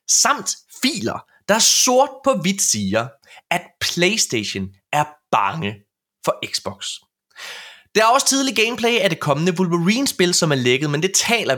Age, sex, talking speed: 20-39, male, 145 wpm